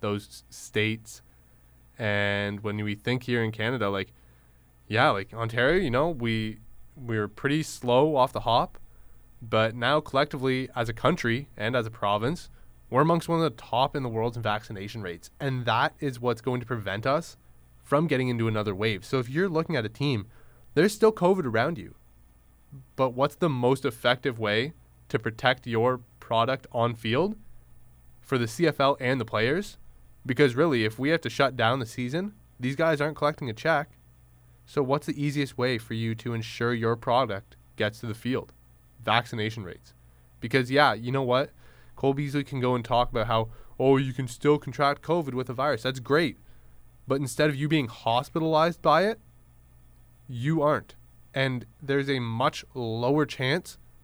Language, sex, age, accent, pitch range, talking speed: English, male, 20-39, American, 110-140 Hz, 180 wpm